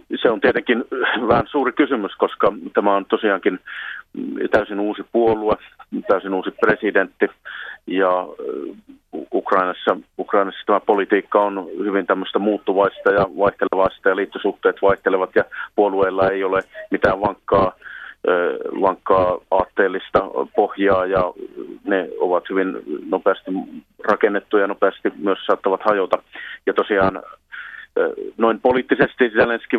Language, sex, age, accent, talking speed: Finnish, male, 40-59, native, 110 wpm